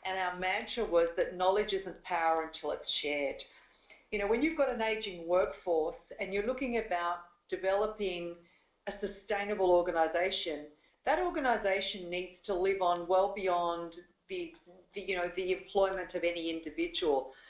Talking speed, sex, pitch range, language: 145 wpm, female, 180-225 Hz, English